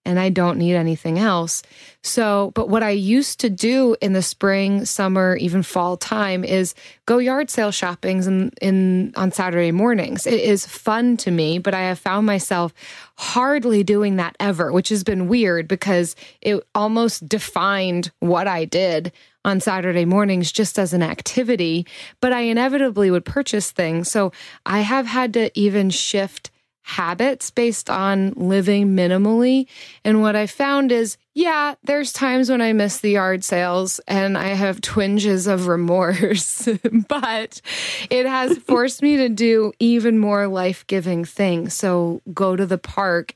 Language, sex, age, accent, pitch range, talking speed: English, female, 20-39, American, 180-225 Hz, 160 wpm